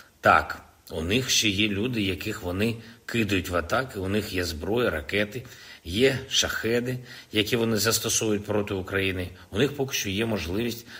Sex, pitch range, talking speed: male, 85-110 Hz, 160 wpm